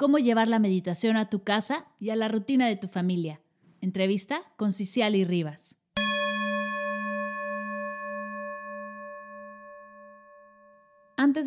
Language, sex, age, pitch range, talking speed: Spanish, female, 20-39, 185-230 Hz, 105 wpm